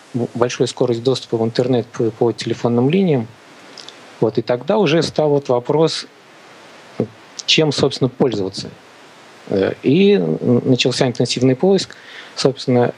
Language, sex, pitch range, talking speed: Russian, male, 120-145 Hz, 110 wpm